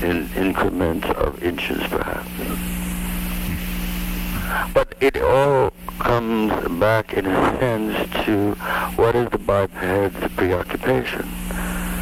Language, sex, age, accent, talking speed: English, male, 60-79, American, 95 wpm